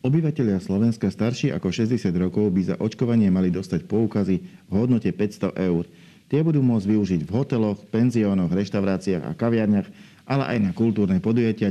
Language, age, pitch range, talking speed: Slovak, 50-69, 95-110 Hz, 160 wpm